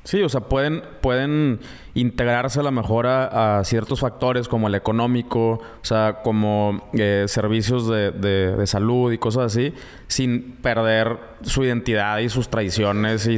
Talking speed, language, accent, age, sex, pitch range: 155 wpm, Spanish, Mexican, 20-39, male, 110-135 Hz